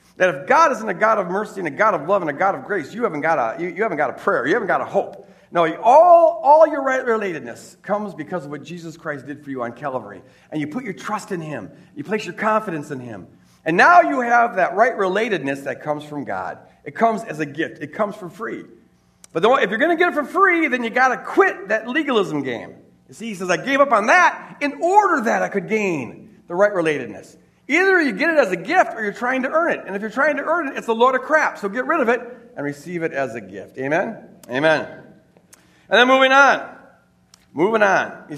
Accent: American